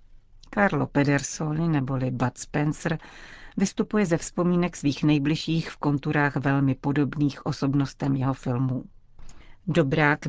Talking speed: 105 wpm